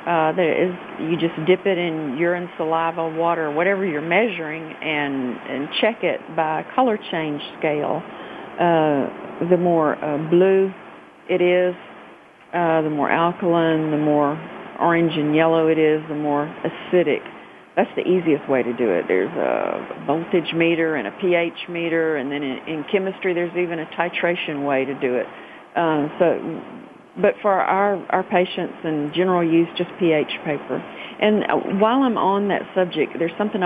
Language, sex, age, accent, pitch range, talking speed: English, female, 50-69, American, 160-180 Hz, 165 wpm